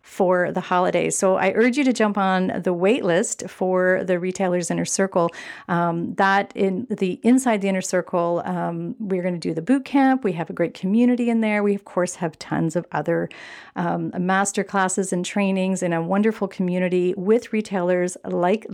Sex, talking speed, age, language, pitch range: female, 190 wpm, 40-59, English, 180-220 Hz